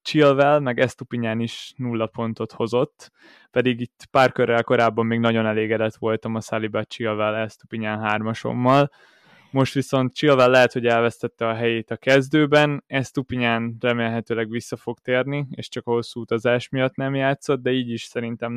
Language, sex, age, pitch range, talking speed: Hungarian, male, 20-39, 110-130 Hz, 155 wpm